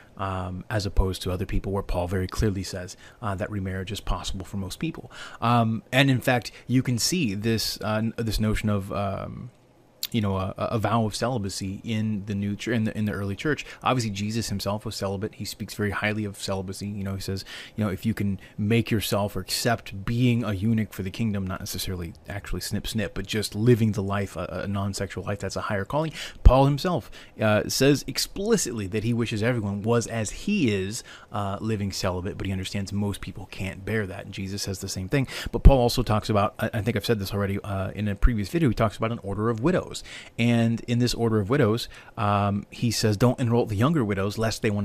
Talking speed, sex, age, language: 220 wpm, male, 30-49, English